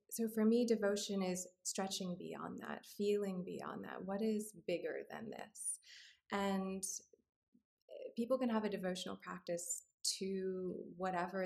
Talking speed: 130 wpm